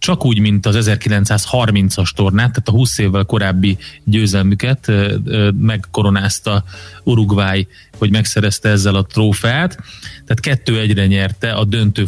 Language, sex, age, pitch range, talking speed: Hungarian, male, 30-49, 100-115 Hz, 125 wpm